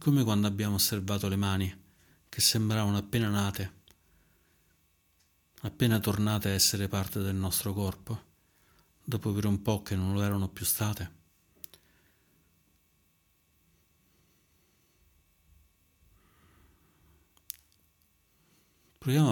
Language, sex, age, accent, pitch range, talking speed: Italian, male, 40-59, native, 80-100 Hz, 90 wpm